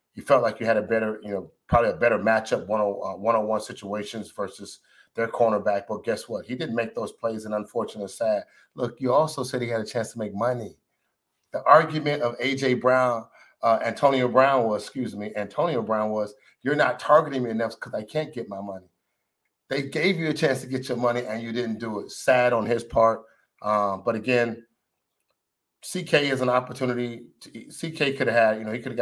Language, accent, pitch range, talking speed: English, American, 110-130 Hz, 215 wpm